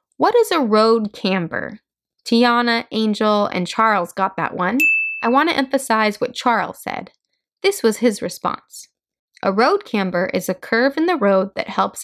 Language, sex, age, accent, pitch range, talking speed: English, female, 10-29, American, 195-265 Hz, 170 wpm